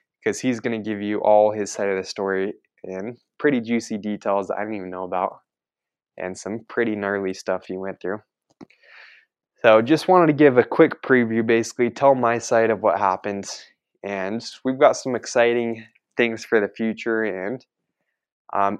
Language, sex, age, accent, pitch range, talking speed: English, male, 20-39, American, 105-120 Hz, 180 wpm